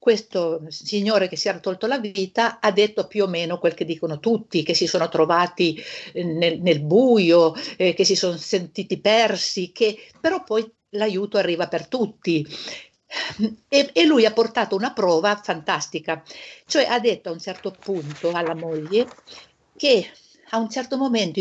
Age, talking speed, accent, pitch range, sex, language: 50-69, 165 wpm, native, 175-235 Hz, female, Italian